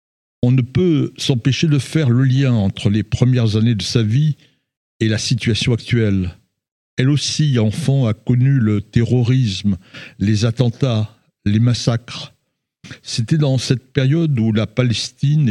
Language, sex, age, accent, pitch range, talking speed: French, male, 60-79, French, 110-135 Hz, 145 wpm